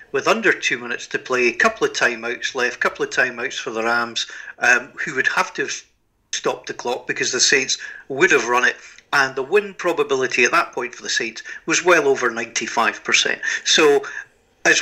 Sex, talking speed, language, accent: male, 205 wpm, English, British